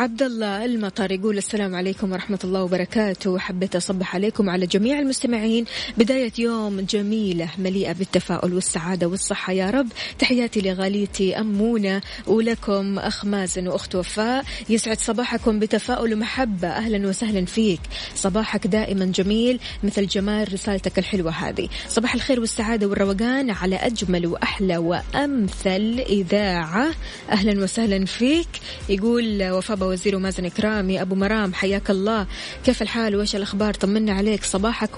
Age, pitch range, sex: 20-39, 190-225 Hz, female